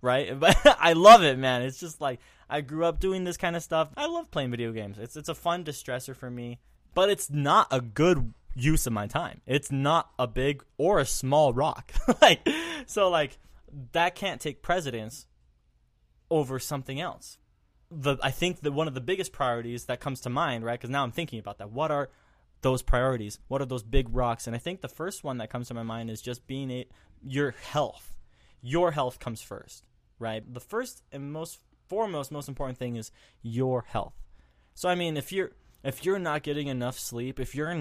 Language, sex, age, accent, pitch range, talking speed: English, male, 20-39, American, 120-145 Hz, 210 wpm